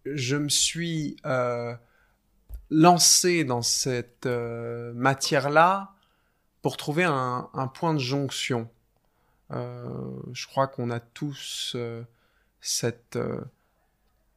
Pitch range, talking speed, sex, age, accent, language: 120-140 Hz, 105 wpm, male, 20-39, French, French